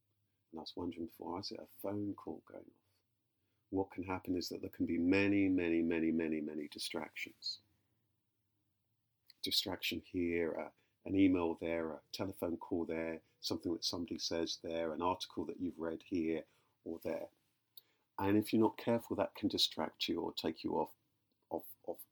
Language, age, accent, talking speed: English, 50-69, British, 170 wpm